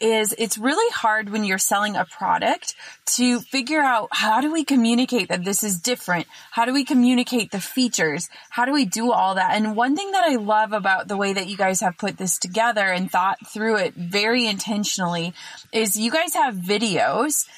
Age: 20-39